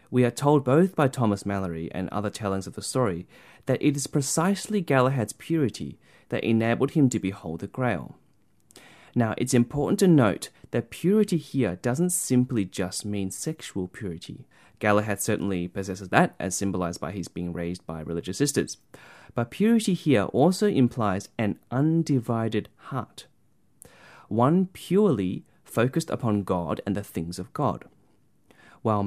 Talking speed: 150 wpm